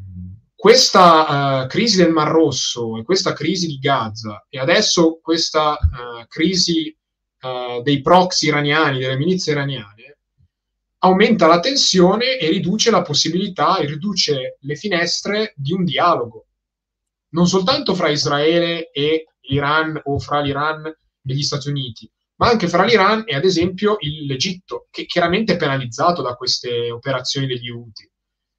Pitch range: 135-180 Hz